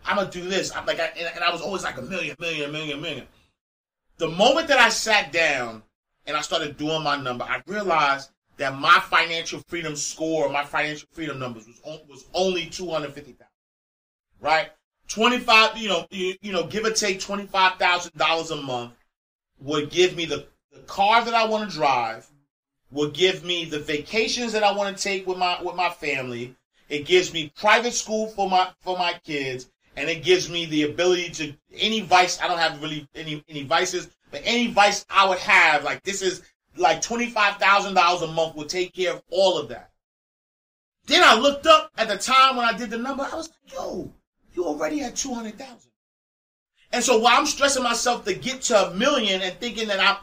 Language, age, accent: English, 30-49, American